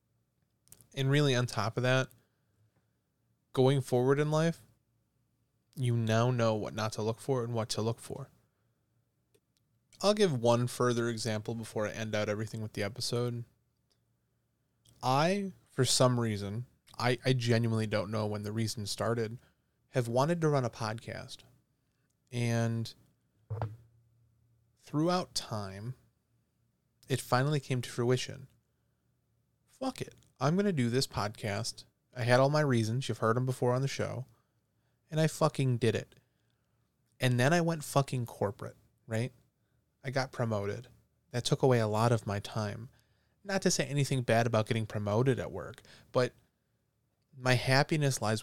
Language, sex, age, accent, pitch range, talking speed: English, male, 20-39, American, 115-130 Hz, 150 wpm